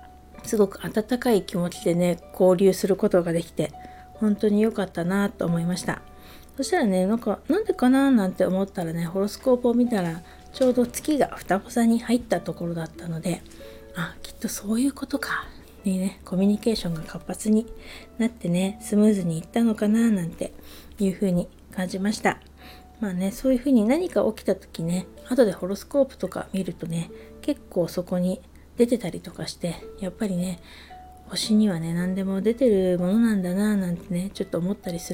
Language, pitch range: Japanese, 175-225 Hz